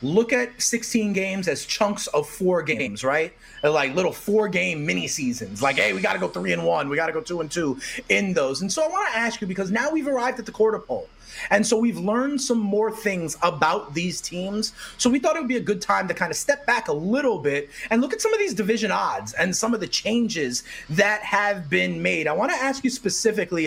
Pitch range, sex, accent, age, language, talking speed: 180-240 Hz, male, American, 30-49, English, 245 wpm